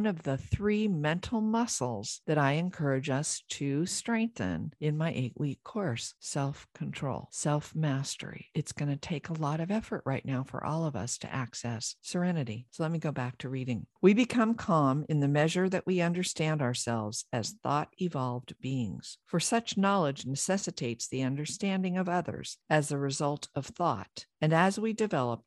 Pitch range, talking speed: 130-180 Hz, 170 wpm